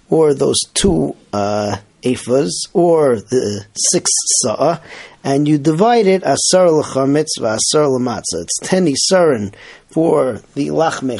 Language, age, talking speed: English, 40-59, 125 wpm